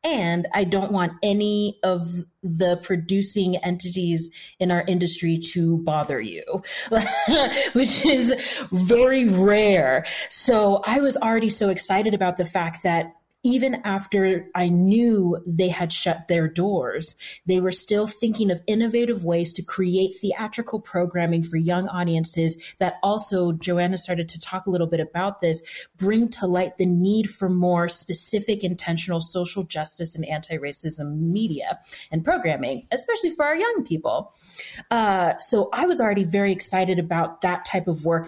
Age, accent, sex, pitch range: 30-49, American, female, 170-205 Hz